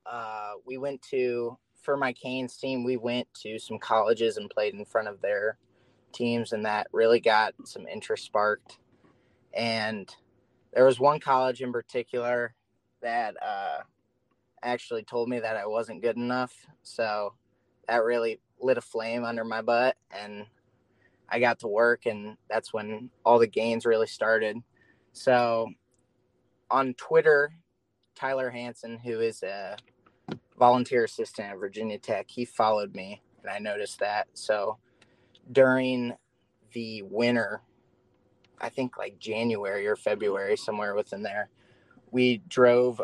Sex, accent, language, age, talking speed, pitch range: male, American, English, 20-39, 140 wpm, 110-125 Hz